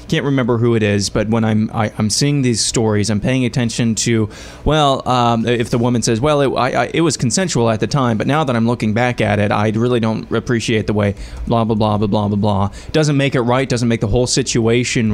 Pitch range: 105-120 Hz